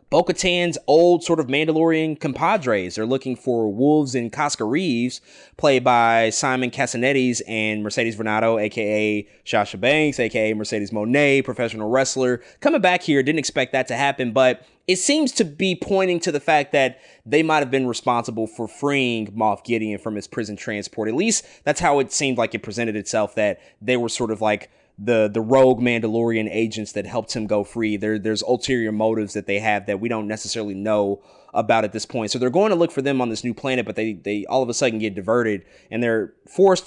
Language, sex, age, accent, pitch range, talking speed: English, male, 20-39, American, 110-165 Hz, 200 wpm